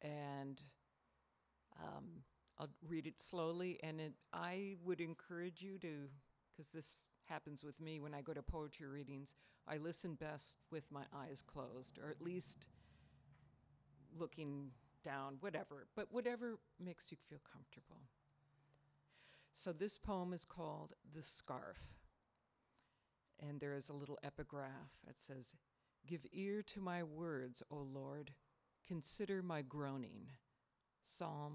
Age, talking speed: 50-69, 125 wpm